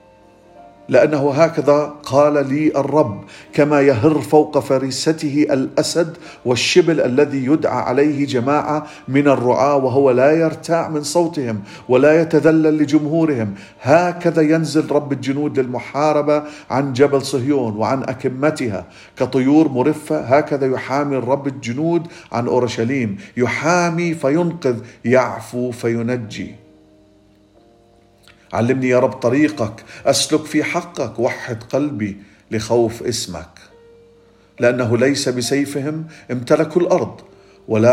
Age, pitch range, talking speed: 50-69, 115-150 Hz, 100 wpm